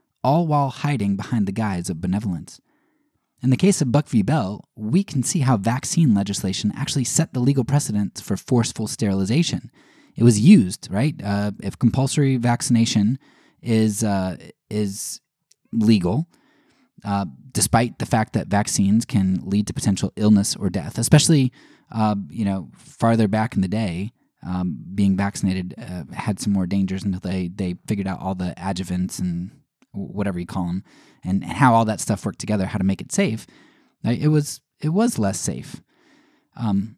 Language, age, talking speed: English, 20-39, 165 wpm